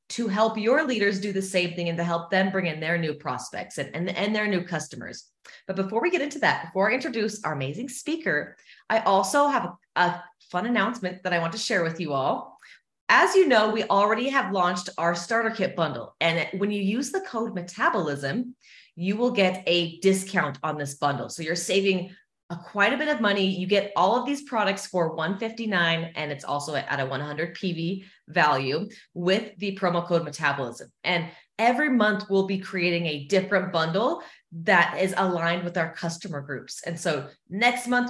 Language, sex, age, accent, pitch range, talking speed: English, female, 30-49, American, 165-215 Hz, 200 wpm